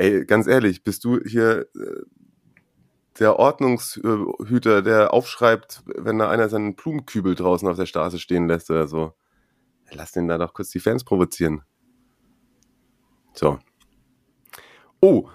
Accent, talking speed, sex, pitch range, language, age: German, 130 wpm, male, 85-110 Hz, German, 30-49